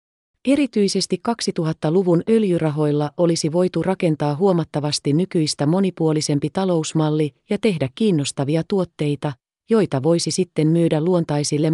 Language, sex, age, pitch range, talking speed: Finnish, female, 30-49, 150-185 Hz, 95 wpm